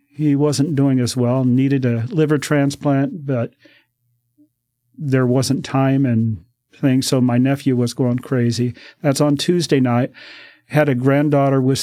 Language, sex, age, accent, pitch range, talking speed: English, male, 50-69, American, 125-145 Hz, 145 wpm